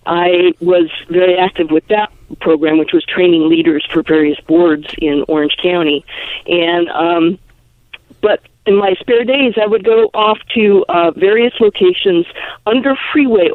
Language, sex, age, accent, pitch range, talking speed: English, female, 50-69, American, 170-230 Hz, 150 wpm